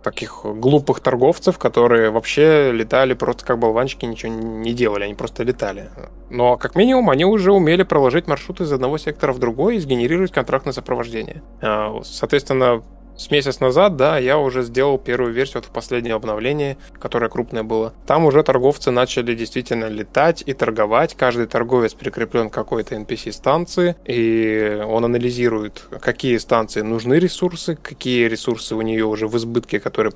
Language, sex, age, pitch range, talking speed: Russian, male, 20-39, 115-140 Hz, 160 wpm